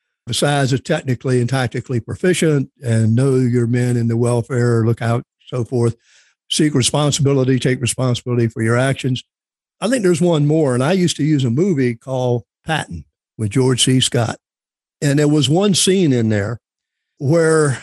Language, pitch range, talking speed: English, 125-155 Hz, 170 wpm